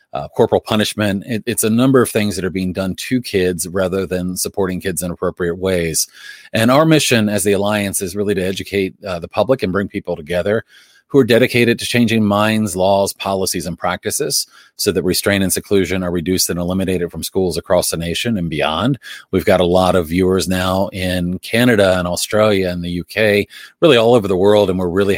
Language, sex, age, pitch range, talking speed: English, male, 30-49, 95-110 Hz, 205 wpm